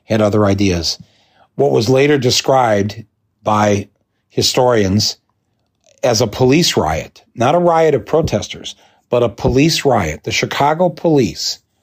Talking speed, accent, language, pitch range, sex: 125 wpm, American, English, 105-140 Hz, male